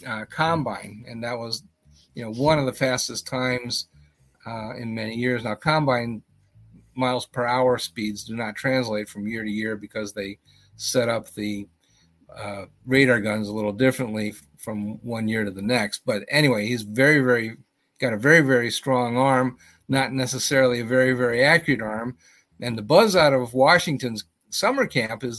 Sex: male